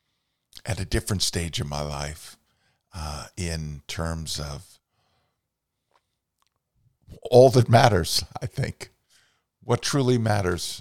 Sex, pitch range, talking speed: male, 90-115 Hz, 105 wpm